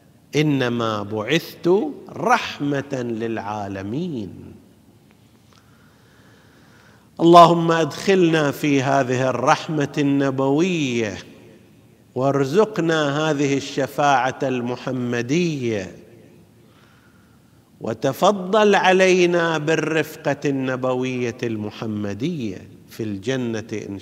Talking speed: 55 wpm